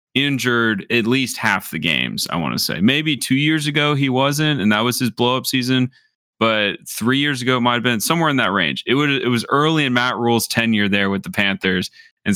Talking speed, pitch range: 230 wpm, 100-125 Hz